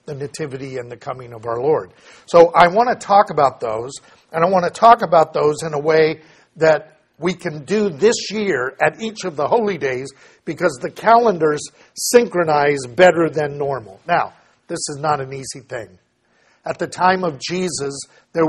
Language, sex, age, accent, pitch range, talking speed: English, male, 50-69, American, 150-185 Hz, 185 wpm